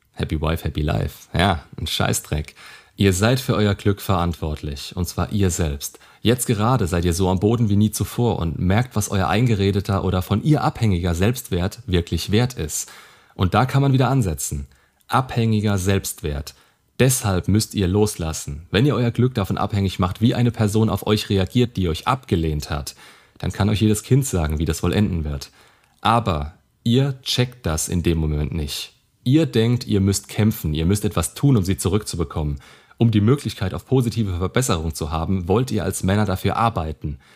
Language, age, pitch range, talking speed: German, 30-49, 85-110 Hz, 185 wpm